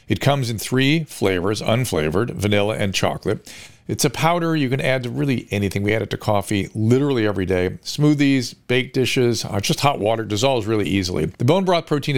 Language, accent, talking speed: English, American, 190 wpm